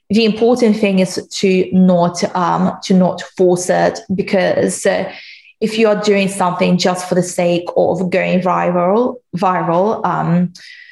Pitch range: 175-195 Hz